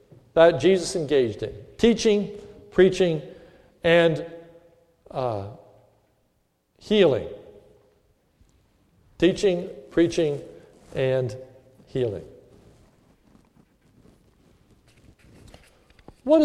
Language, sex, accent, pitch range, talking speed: English, male, American, 135-205 Hz, 50 wpm